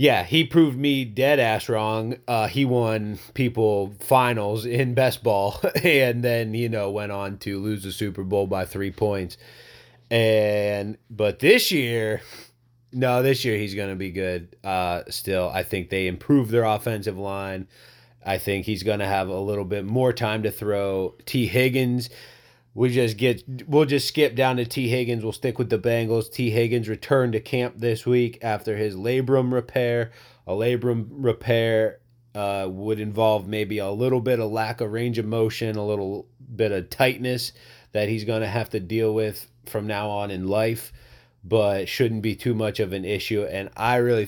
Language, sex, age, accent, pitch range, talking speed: English, male, 30-49, American, 100-120 Hz, 185 wpm